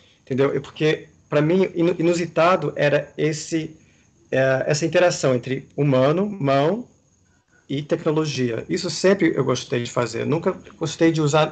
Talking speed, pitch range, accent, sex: 130 wpm, 140-180 Hz, Brazilian, male